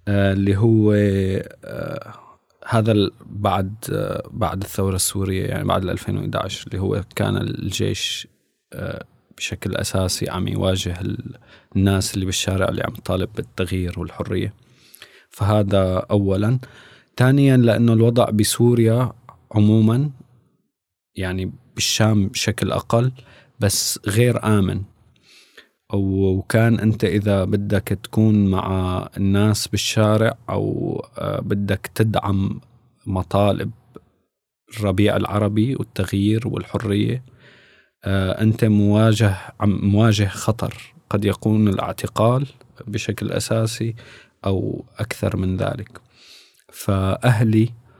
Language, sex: Arabic, male